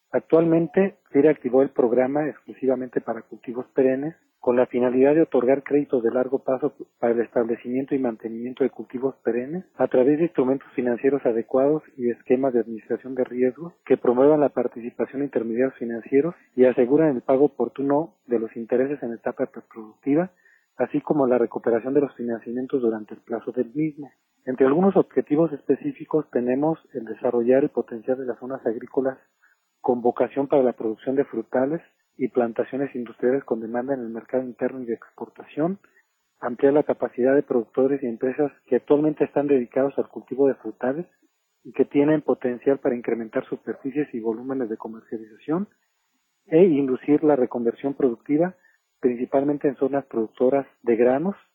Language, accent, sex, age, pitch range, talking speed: Spanish, Mexican, male, 40-59, 120-145 Hz, 160 wpm